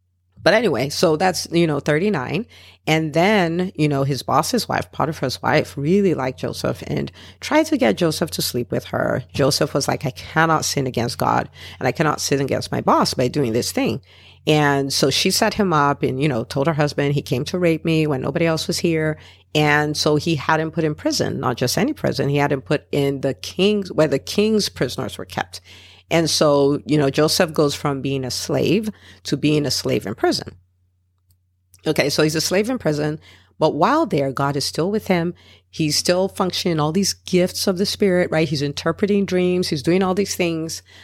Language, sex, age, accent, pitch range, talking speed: English, female, 50-69, American, 135-175 Hz, 210 wpm